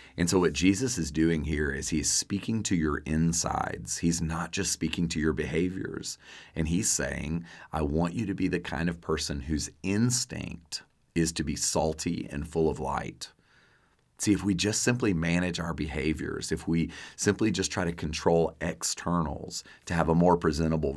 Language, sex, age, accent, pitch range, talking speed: English, male, 40-59, American, 75-85 Hz, 180 wpm